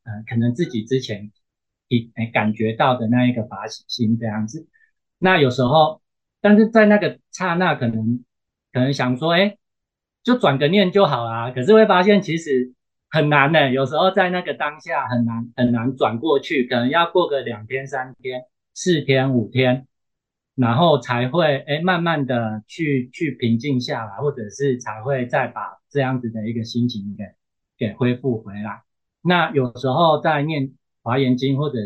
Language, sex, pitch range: Chinese, male, 115-150 Hz